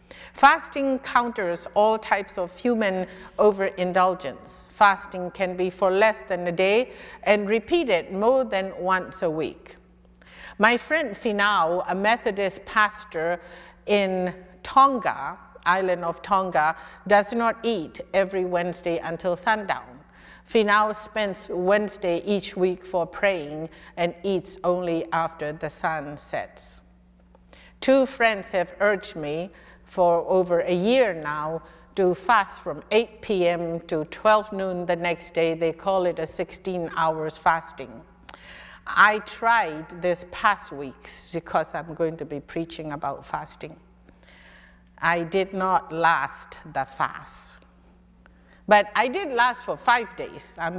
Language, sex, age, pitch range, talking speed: English, female, 50-69, 165-210 Hz, 130 wpm